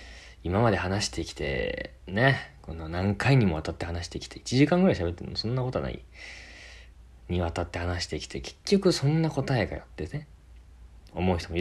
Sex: male